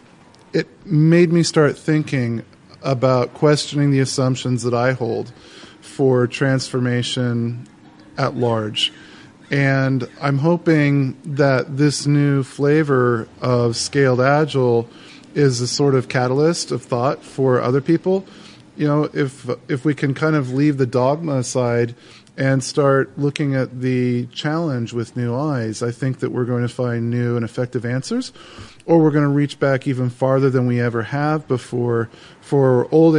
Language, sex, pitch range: English, male, 120-145 Hz